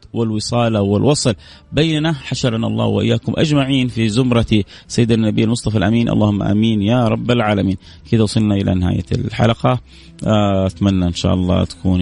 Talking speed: 140 wpm